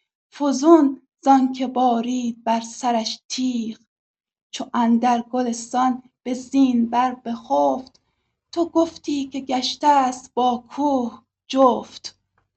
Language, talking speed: Persian, 105 wpm